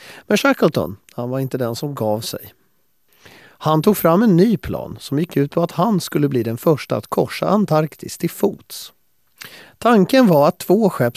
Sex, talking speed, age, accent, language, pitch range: male, 190 wpm, 40-59, native, Swedish, 125-170 Hz